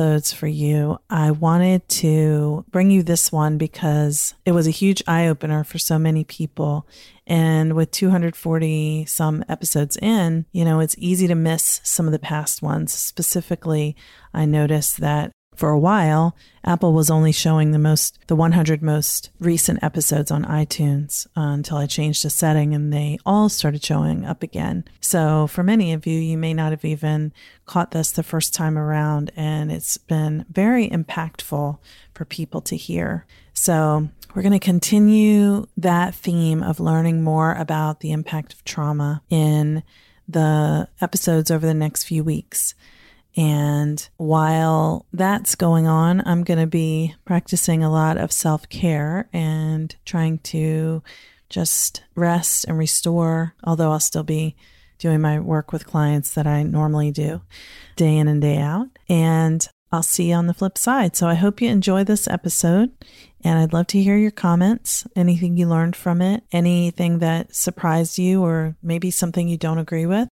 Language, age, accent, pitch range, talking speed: English, 30-49, American, 155-175 Hz, 165 wpm